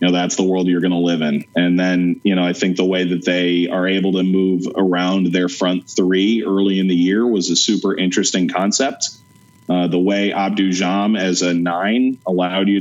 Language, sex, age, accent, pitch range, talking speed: English, male, 30-49, American, 90-100 Hz, 215 wpm